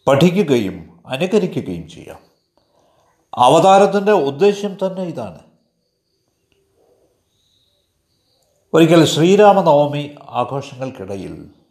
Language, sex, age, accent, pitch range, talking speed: Malayalam, male, 50-69, native, 115-170 Hz, 50 wpm